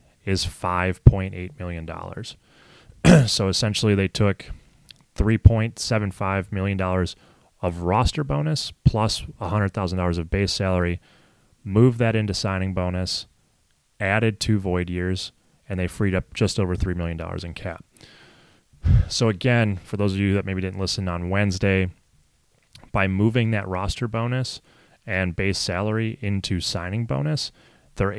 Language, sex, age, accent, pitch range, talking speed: English, male, 30-49, American, 90-110 Hz, 130 wpm